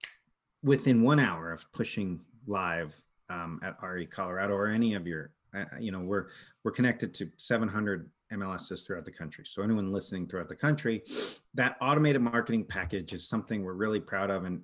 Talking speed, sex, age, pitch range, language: 175 wpm, male, 40-59, 95-120 Hz, English